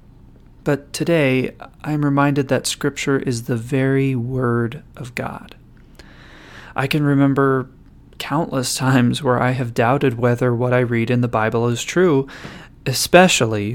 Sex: male